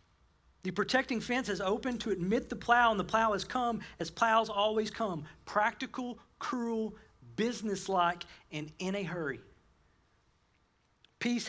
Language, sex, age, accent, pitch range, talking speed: English, male, 40-59, American, 160-220 Hz, 135 wpm